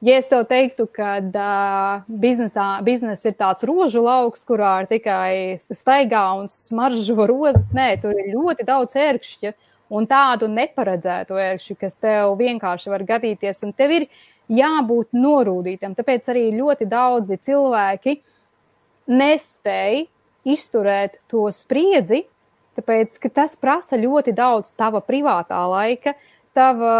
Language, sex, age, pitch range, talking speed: English, female, 20-39, 205-260 Hz, 125 wpm